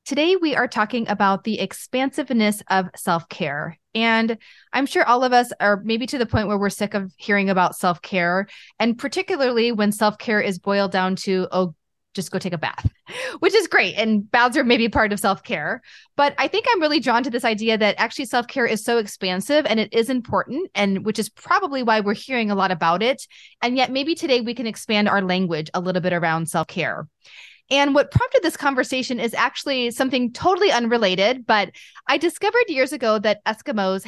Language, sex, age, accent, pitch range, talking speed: English, female, 20-39, American, 190-255 Hz, 195 wpm